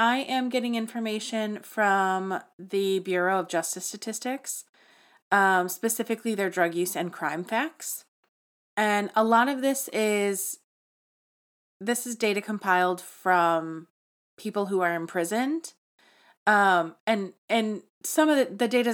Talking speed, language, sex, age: 125 wpm, English, female, 30-49